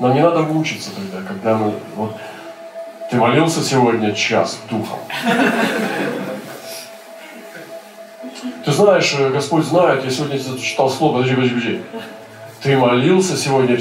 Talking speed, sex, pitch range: 115 wpm, male, 115-160 Hz